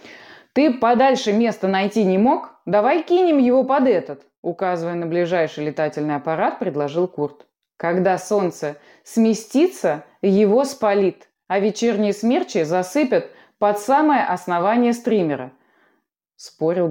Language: Russian